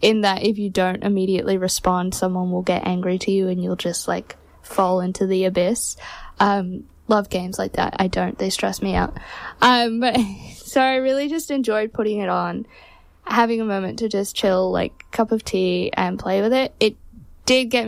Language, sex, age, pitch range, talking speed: English, female, 10-29, 190-230 Hz, 200 wpm